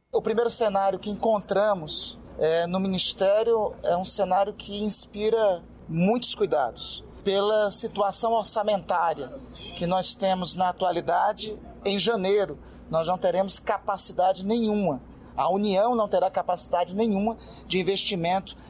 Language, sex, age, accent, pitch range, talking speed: Portuguese, male, 30-49, Brazilian, 190-240 Hz, 120 wpm